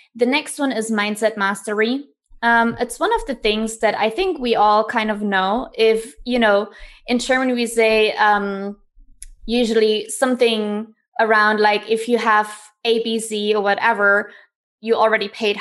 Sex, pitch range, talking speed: female, 210-245 Hz, 160 wpm